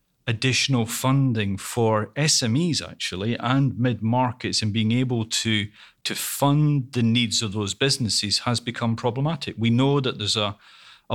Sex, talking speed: male, 150 wpm